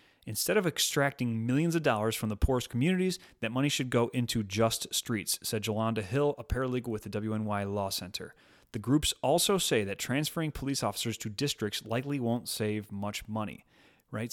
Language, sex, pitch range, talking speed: English, male, 110-130 Hz, 180 wpm